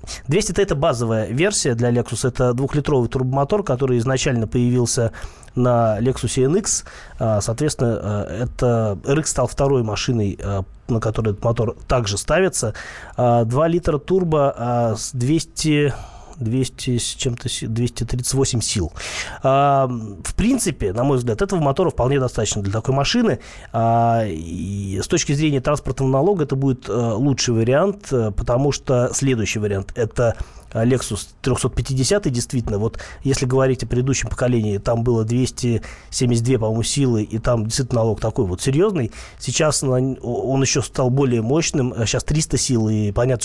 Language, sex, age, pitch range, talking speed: Russian, male, 20-39, 115-140 Hz, 130 wpm